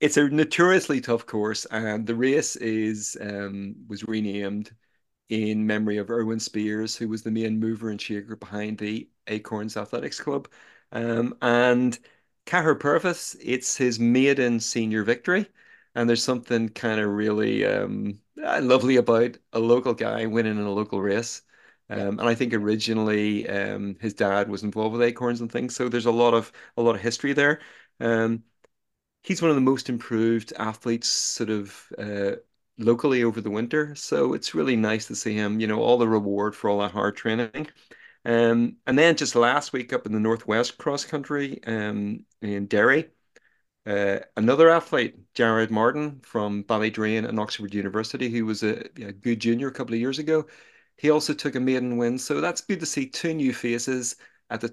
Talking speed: 180 wpm